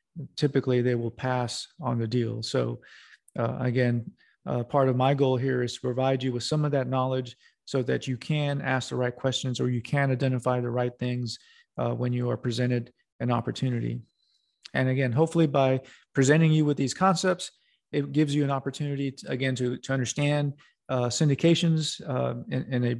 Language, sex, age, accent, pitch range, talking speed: English, male, 40-59, American, 125-145 Hz, 175 wpm